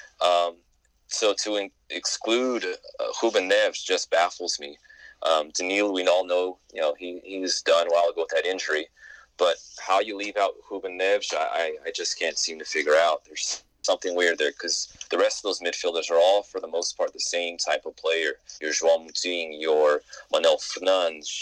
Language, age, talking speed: English, 30-49, 195 wpm